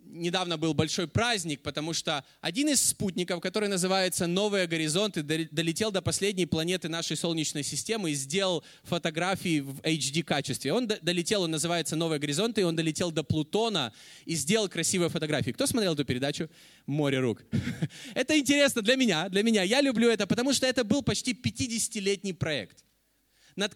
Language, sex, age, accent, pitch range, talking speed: Russian, male, 20-39, native, 150-225 Hz, 160 wpm